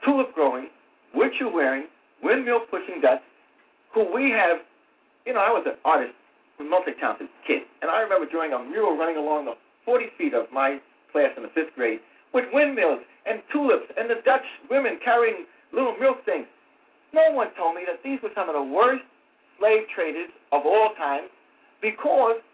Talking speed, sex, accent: 175 wpm, male, American